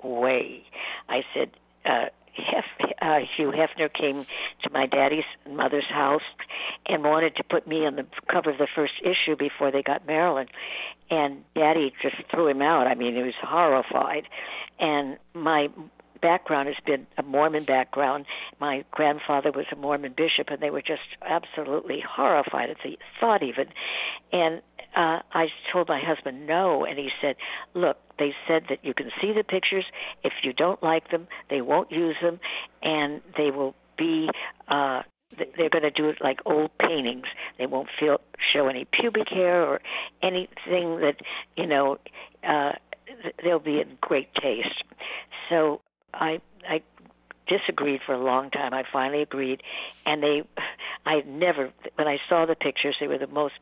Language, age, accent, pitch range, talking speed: English, 60-79, American, 140-165 Hz, 165 wpm